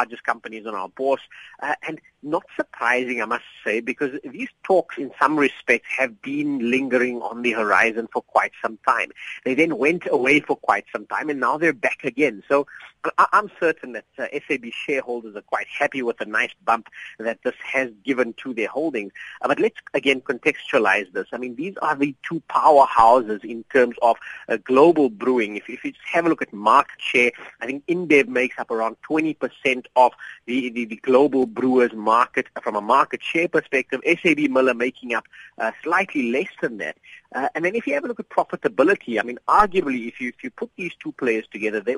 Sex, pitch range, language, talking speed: male, 120-150 Hz, English, 205 wpm